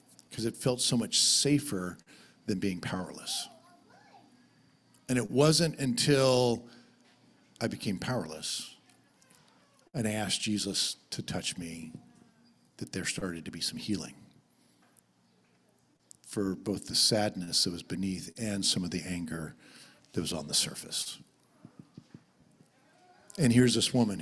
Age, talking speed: 50-69, 125 wpm